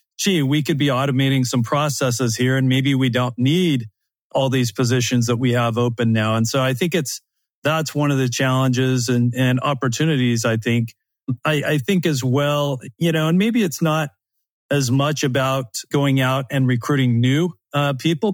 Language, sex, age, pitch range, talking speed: English, male, 40-59, 125-145 Hz, 185 wpm